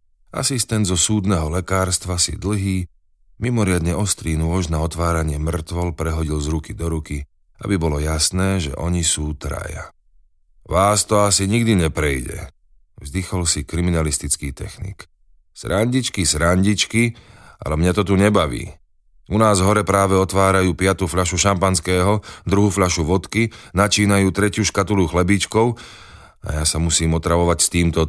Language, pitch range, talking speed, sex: Slovak, 75-100 Hz, 135 wpm, male